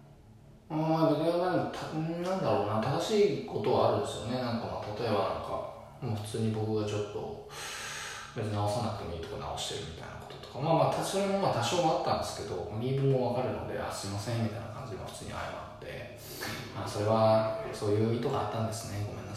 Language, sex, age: Japanese, male, 20-39